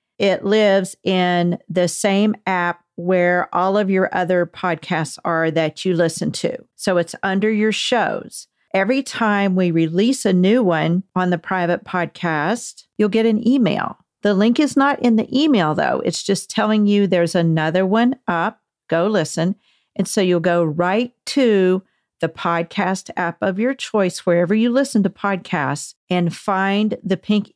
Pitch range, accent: 175-215 Hz, American